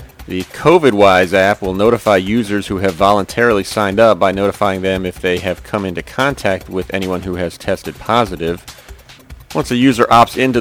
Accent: American